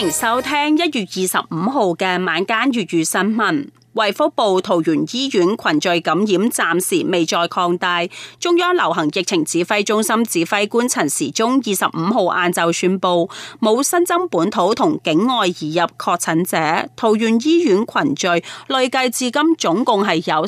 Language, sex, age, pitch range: Chinese, female, 30-49, 175-250 Hz